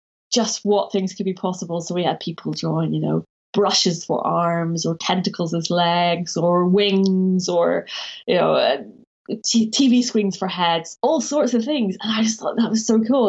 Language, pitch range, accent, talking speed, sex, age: English, 180-220 Hz, British, 185 wpm, female, 20-39